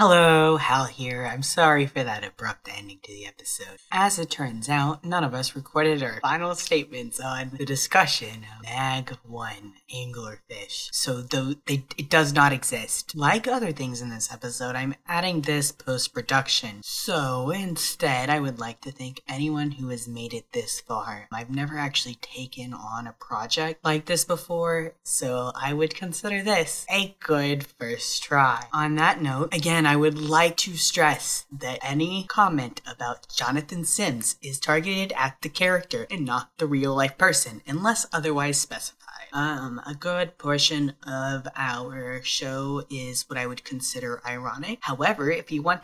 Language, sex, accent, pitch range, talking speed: English, female, American, 125-165 Hz, 160 wpm